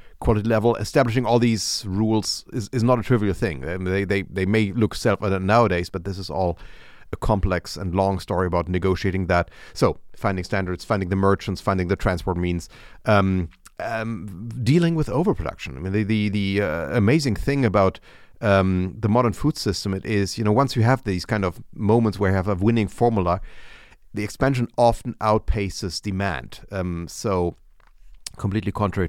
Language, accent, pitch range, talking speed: English, German, 95-115 Hz, 180 wpm